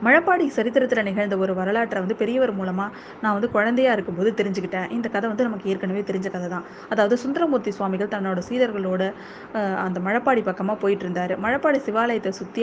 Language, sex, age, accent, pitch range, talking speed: Tamil, female, 20-39, native, 195-240 Hz, 155 wpm